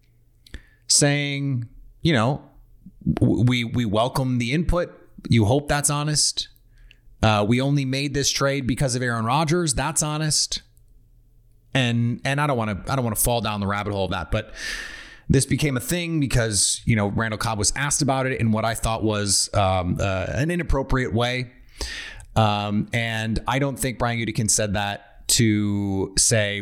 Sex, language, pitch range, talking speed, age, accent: male, English, 110-145 Hz, 170 wpm, 30-49, American